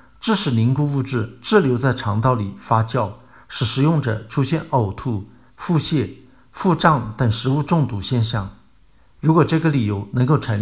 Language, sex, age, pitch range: Chinese, male, 50-69, 110-140 Hz